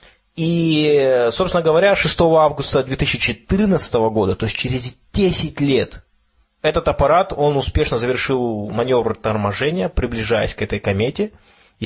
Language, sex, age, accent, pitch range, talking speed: Russian, male, 20-39, native, 110-150 Hz, 120 wpm